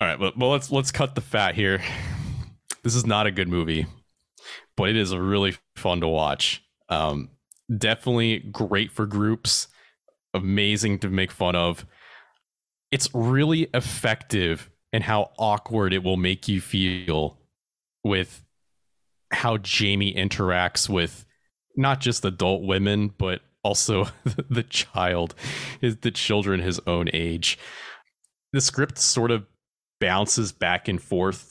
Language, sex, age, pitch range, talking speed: English, male, 30-49, 90-120 Hz, 135 wpm